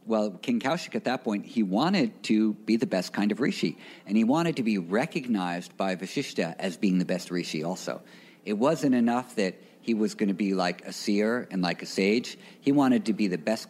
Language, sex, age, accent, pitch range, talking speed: English, male, 50-69, American, 90-115 Hz, 225 wpm